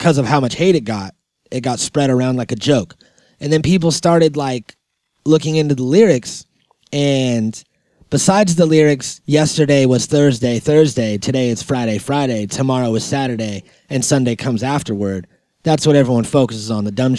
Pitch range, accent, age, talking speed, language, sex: 120-145 Hz, American, 30-49, 170 wpm, English, male